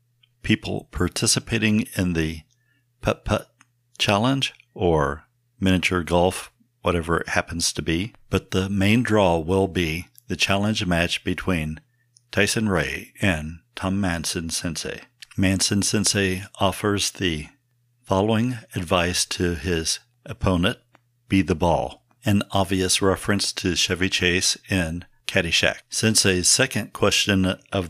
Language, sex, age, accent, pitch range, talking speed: English, male, 60-79, American, 90-115 Hz, 110 wpm